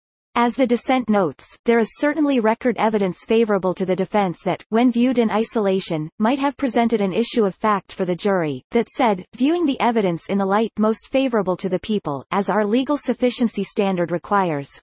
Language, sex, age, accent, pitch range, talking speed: English, female, 30-49, American, 195-245 Hz, 190 wpm